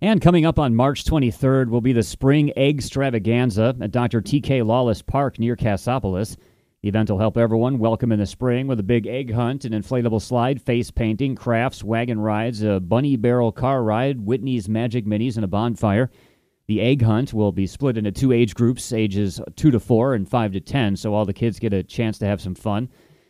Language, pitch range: English, 105-130 Hz